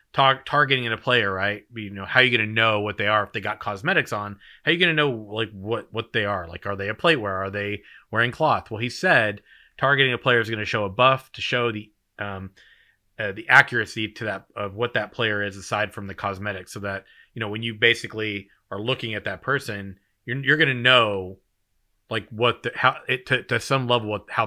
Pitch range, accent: 100-120 Hz, American